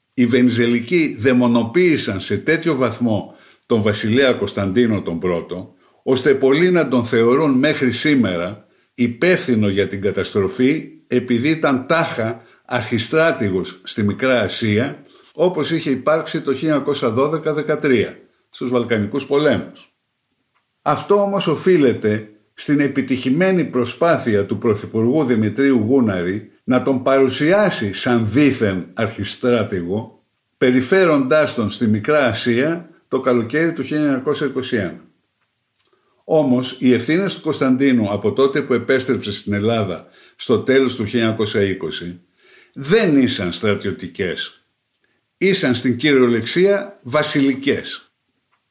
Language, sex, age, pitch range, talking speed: Greek, male, 50-69, 115-150 Hz, 105 wpm